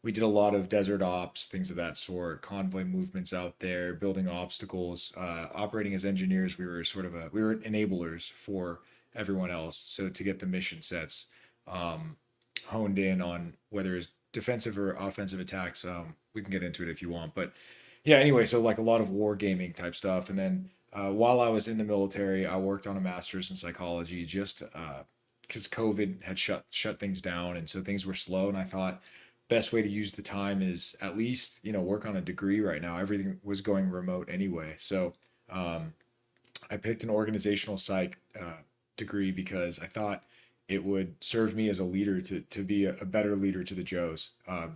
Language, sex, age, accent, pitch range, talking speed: English, male, 30-49, American, 90-105 Hz, 205 wpm